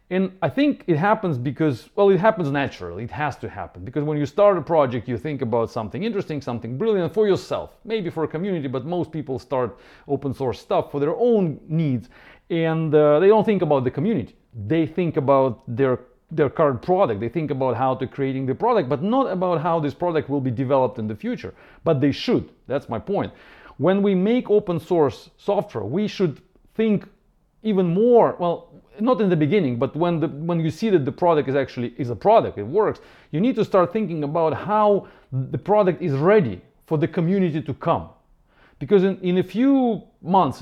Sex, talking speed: male, 200 wpm